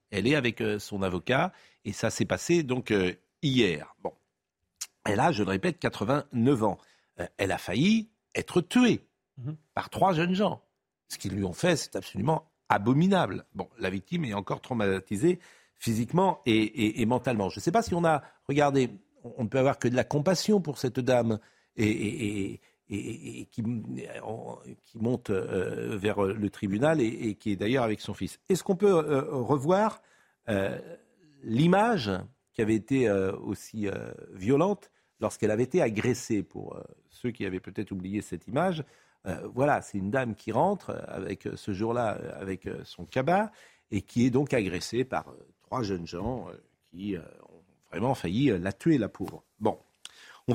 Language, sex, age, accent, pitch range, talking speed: French, male, 50-69, French, 100-150 Hz, 160 wpm